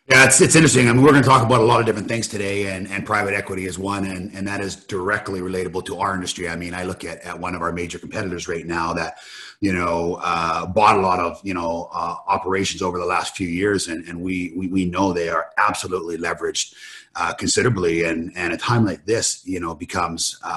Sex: male